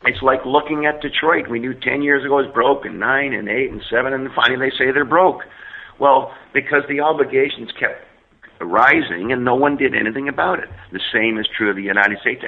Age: 50-69